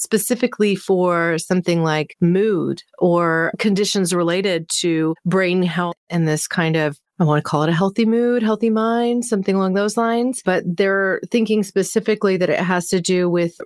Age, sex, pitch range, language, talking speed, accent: 30-49, female, 165-200 Hz, English, 170 wpm, American